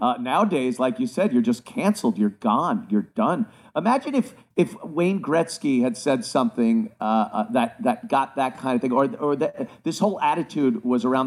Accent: American